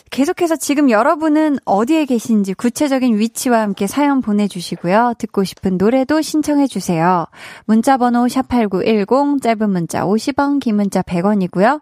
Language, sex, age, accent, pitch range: Korean, female, 20-39, native, 195-275 Hz